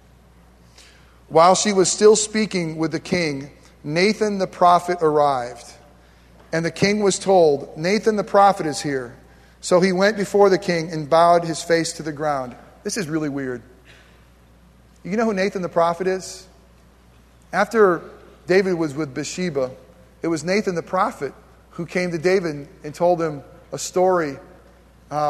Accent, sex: American, male